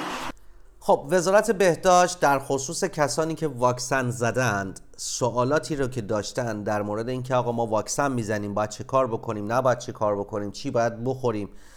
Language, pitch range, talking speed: Persian, 110-150 Hz, 160 wpm